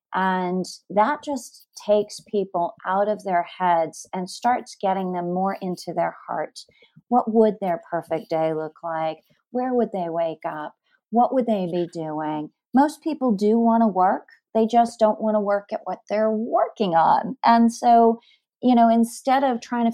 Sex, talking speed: female, 180 wpm